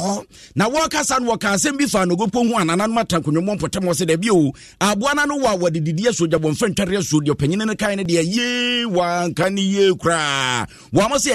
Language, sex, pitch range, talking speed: English, male, 170-225 Hz, 190 wpm